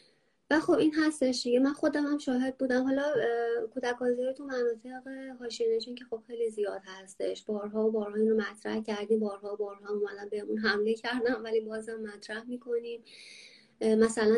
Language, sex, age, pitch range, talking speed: English, female, 20-39, 210-235 Hz, 155 wpm